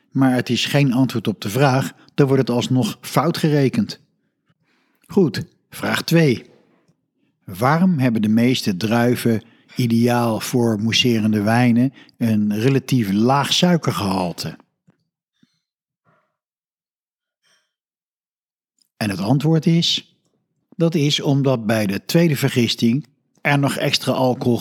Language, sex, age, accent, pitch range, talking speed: Dutch, male, 50-69, Dutch, 115-145 Hz, 110 wpm